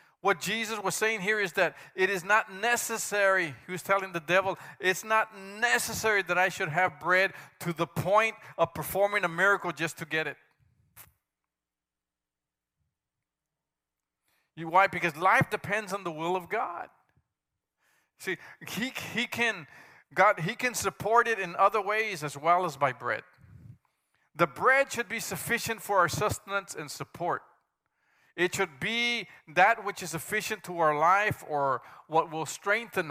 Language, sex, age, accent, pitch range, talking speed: English, male, 50-69, American, 155-210 Hz, 150 wpm